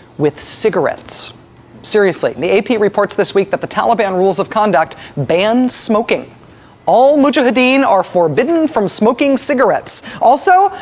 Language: English